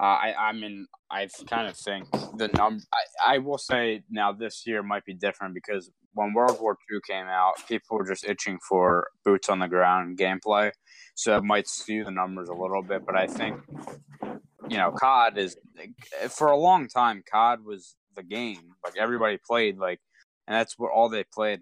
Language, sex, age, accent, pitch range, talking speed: English, male, 20-39, American, 95-115 Hz, 205 wpm